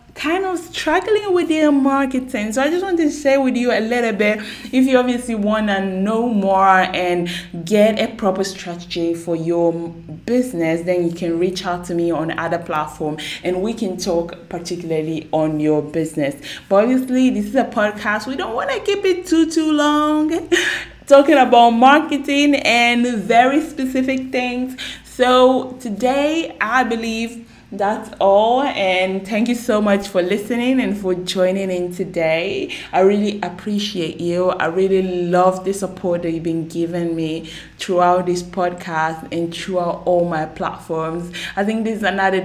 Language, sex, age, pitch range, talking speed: English, female, 20-39, 175-250 Hz, 165 wpm